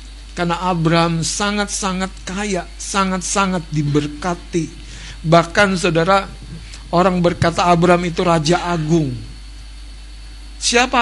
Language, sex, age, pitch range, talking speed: Indonesian, male, 60-79, 120-180 Hz, 80 wpm